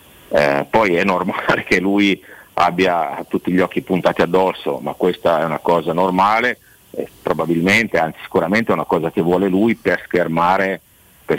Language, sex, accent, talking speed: Italian, male, native, 165 wpm